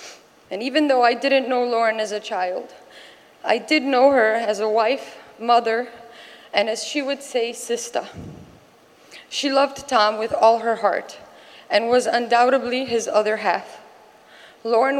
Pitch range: 220-260 Hz